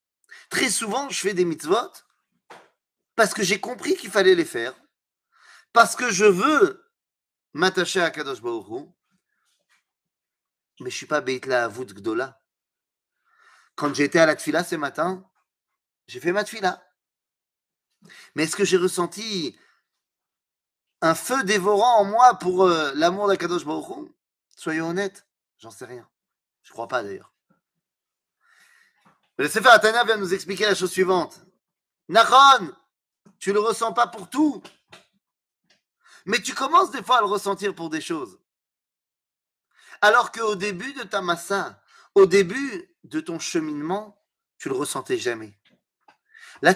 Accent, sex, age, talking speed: French, male, 30-49, 140 wpm